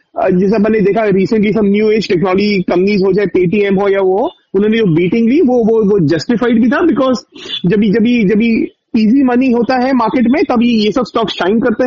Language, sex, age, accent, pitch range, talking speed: Hindi, male, 30-49, native, 200-245 Hz, 185 wpm